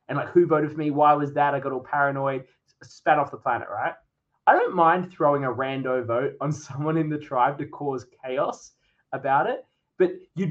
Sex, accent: male, Australian